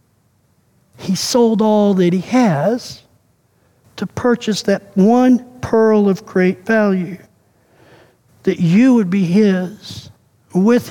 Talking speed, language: 110 wpm, English